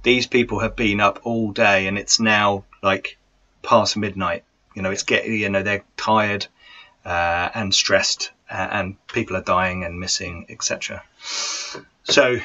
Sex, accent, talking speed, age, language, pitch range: male, British, 160 wpm, 30-49, English, 95-110 Hz